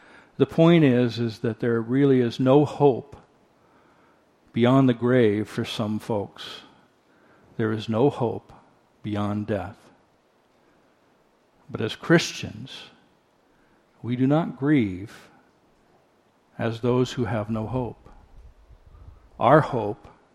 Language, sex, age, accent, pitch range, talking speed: English, male, 60-79, American, 115-145 Hz, 110 wpm